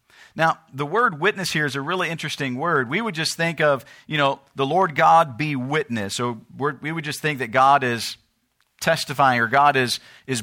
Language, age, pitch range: English, 50-69, 125-165 Hz